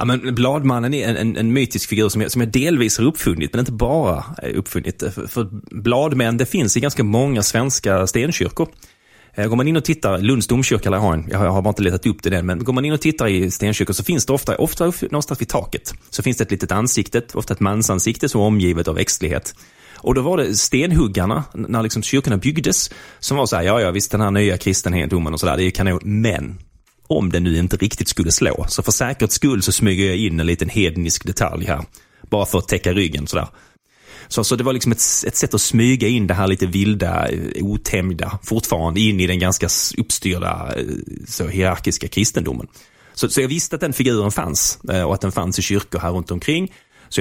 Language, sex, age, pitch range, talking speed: Swedish, male, 30-49, 90-115 Hz, 220 wpm